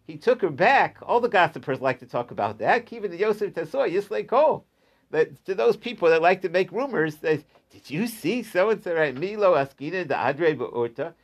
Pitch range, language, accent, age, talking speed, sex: 130-185 Hz, English, American, 50-69, 155 wpm, male